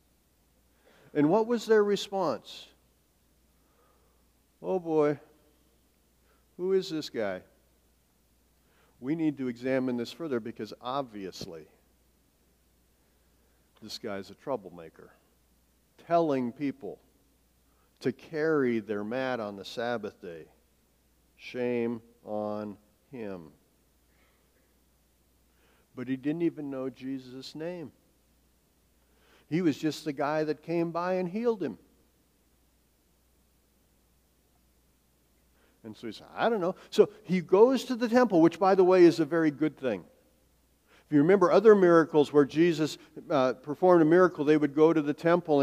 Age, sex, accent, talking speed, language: 60-79, male, American, 120 wpm, English